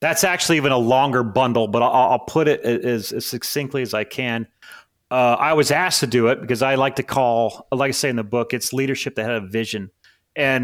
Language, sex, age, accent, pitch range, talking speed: English, male, 30-49, American, 115-135 Hz, 235 wpm